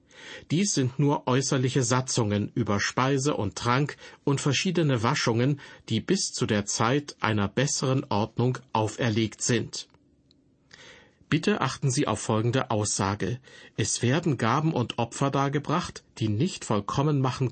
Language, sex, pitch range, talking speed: German, male, 110-150 Hz, 130 wpm